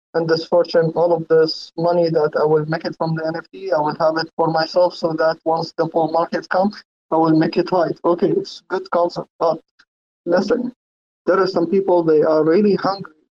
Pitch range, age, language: 160-180 Hz, 30-49, English